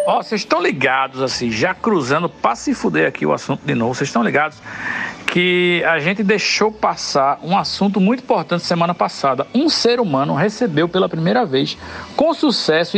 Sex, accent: male, Brazilian